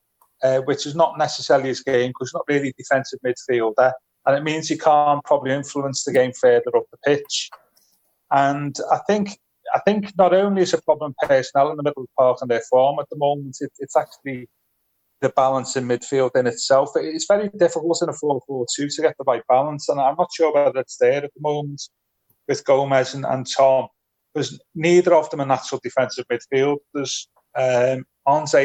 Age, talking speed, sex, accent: 30-49, 200 wpm, male, British